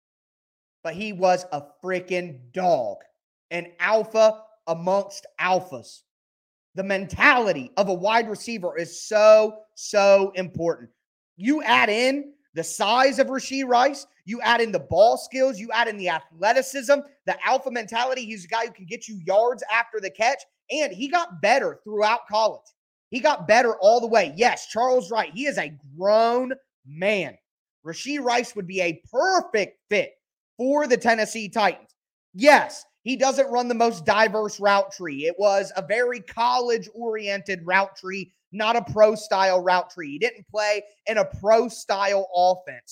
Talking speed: 155 wpm